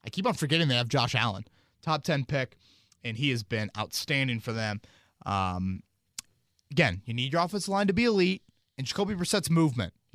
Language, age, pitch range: English, 30-49, 110-155 Hz